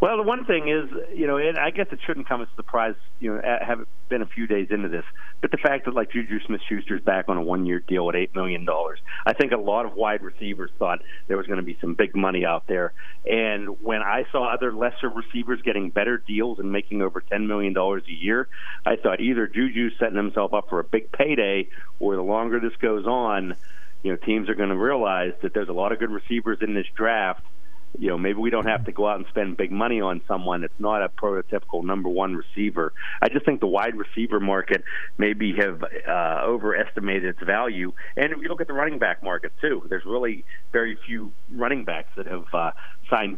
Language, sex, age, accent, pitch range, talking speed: English, male, 40-59, American, 95-115 Hz, 230 wpm